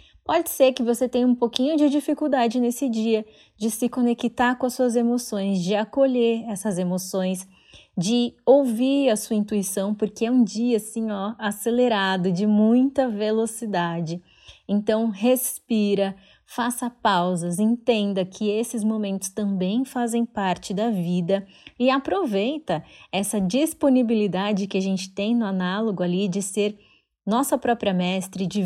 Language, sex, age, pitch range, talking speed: Portuguese, female, 20-39, 190-235 Hz, 140 wpm